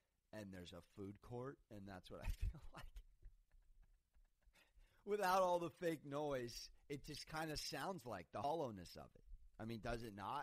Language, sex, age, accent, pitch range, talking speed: English, male, 30-49, American, 90-130 Hz, 180 wpm